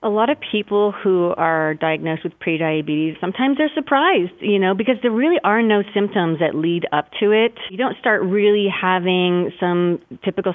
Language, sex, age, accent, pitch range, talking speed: English, female, 30-49, American, 175-215 Hz, 180 wpm